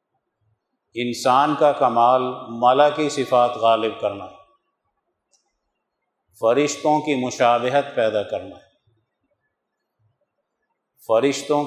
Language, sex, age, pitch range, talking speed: Urdu, male, 50-69, 115-140 Hz, 75 wpm